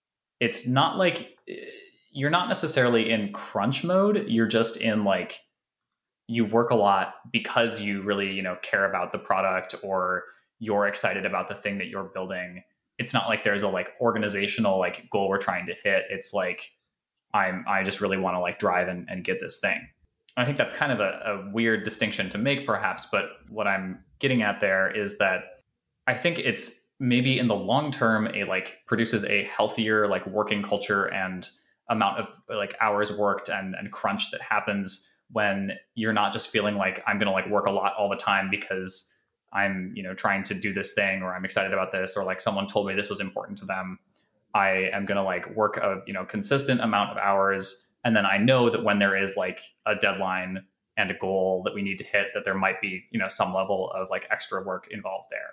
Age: 20-39